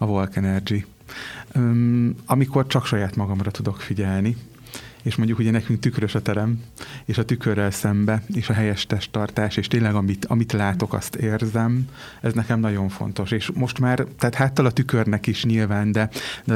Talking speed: 170 wpm